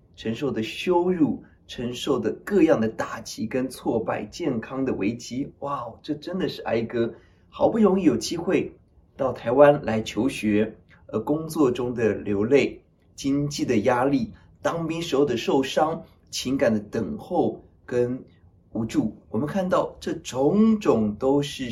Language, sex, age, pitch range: Chinese, male, 20-39, 110-180 Hz